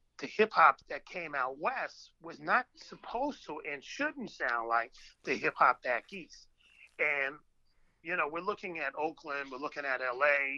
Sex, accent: male, American